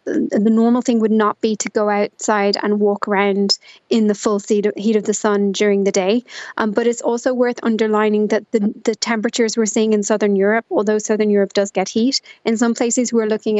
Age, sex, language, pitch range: 20-39, female, English, 205-230 Hz